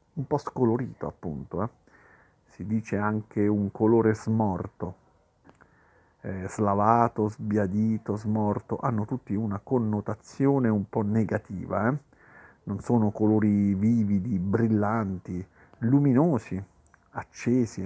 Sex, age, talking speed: male, 50-69, 100 wpm